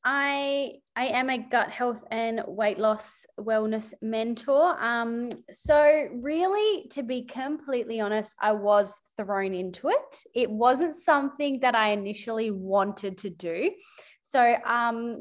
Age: 20-39